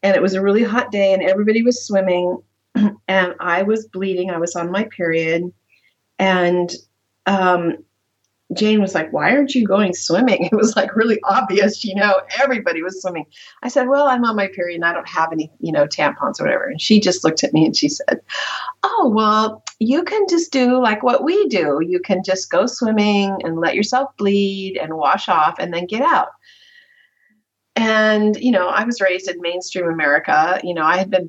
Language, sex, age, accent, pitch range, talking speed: English, female, 40-59, American, 180-235 Hz, 205 wpm